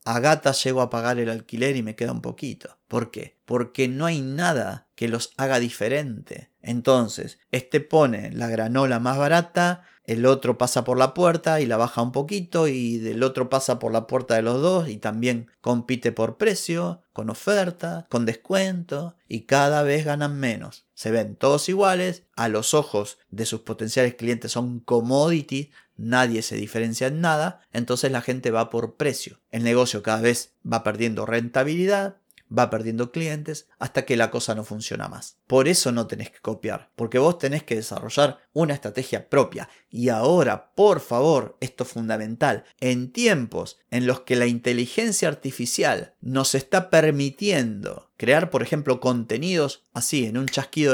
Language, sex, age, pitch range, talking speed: Spanish, male, 30-49, 115-145 Hz, 170 wpm